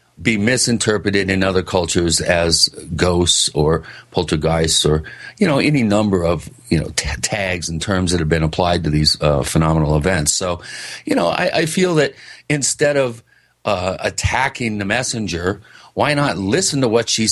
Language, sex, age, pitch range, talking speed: English, male, 40-59, 90-125 Hz, 170 wpm